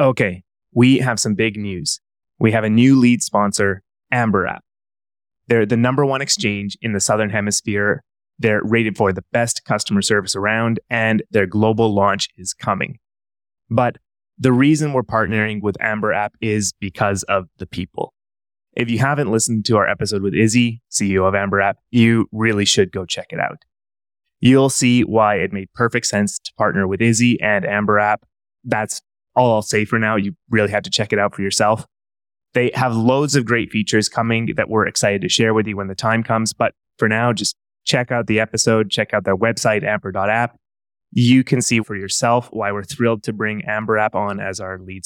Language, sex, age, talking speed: English, male, 20-39, 195 wpm